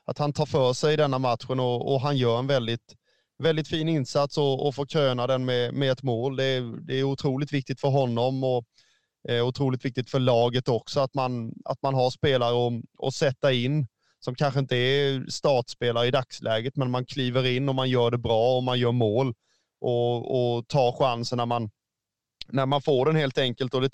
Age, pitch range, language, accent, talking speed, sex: 20-39, 120-140 Hz, Swedish, native, 215 wpm, male